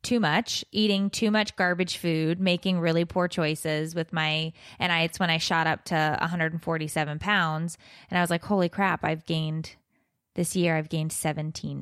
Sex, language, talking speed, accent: female, English, 185 wpm, American